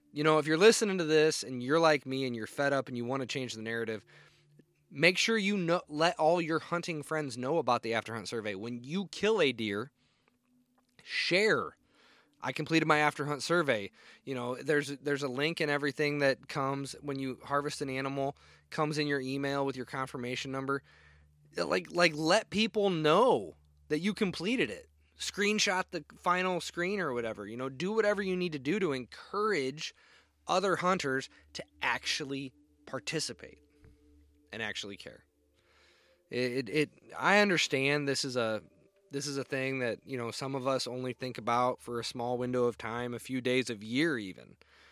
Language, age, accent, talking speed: English, 20-39, American, 185 wpm